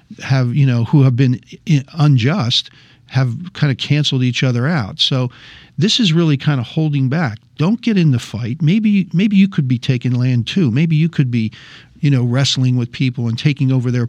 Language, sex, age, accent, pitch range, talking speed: English, male, 50-69, American, 125-155 Hz, 205 wpm